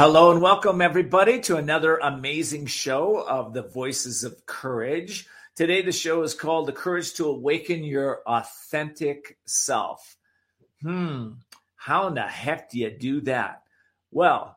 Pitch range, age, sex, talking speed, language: 125-165 Hz, 50-69, male, 145 wpm, English